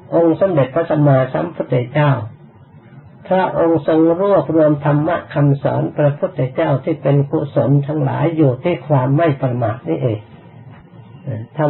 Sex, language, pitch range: male, Thai, 125-155 Hz